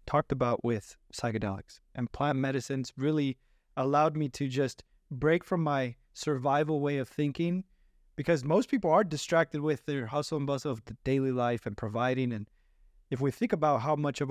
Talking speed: 180 wpm